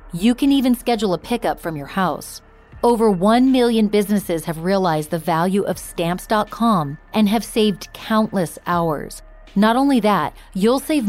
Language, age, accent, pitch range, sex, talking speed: English, 30-49, American, 175-230 Hz, female, 155 wpm